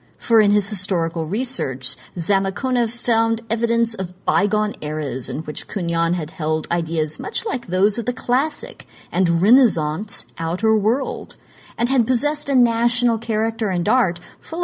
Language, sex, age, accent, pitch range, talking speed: English, female, 40-59, American, 170-230 Hz, 150 wpm